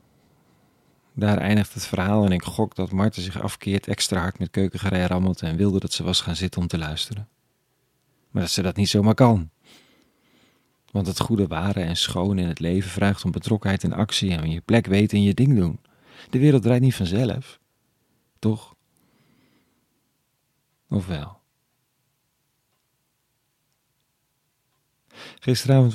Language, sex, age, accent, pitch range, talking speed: Dutch, male, 40-59, Dutch, 95-125 Hz, 150 wpm